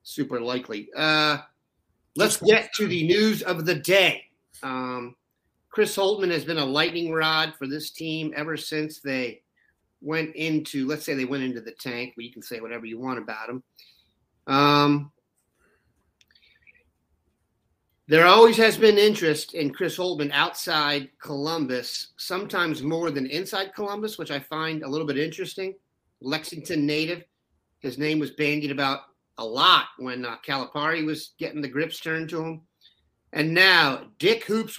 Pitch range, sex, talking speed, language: 135-170 Hz, male, 155 wpm, English